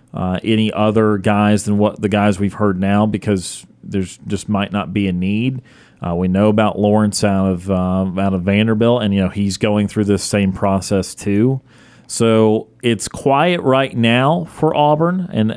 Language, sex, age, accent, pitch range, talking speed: English, male, 40-59, American, 100-115 Hz, 185 wpm